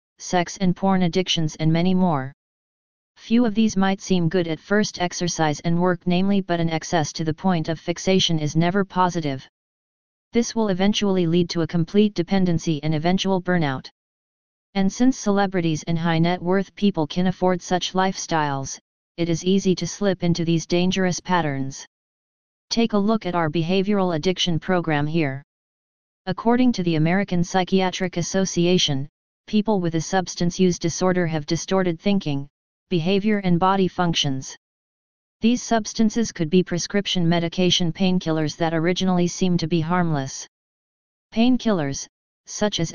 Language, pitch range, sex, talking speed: English, 165-190 Hz, female, 150 wpm